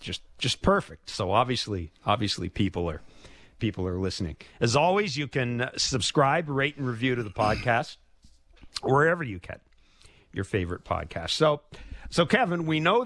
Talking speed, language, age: 150 wpm, English, 50-69